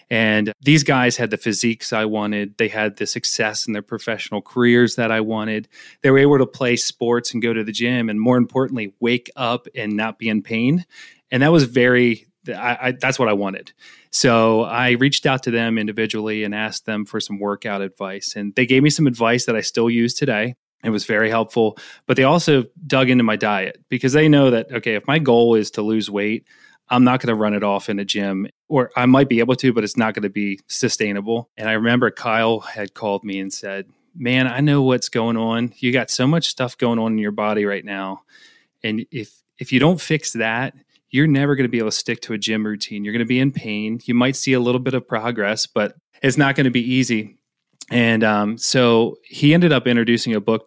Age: 30-49